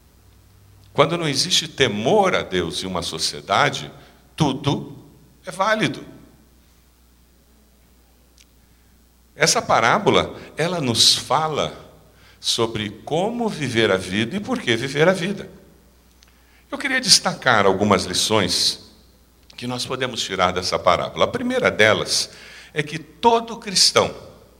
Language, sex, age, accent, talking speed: Portuguese, male, 60-79, Brazilian, 110 wpm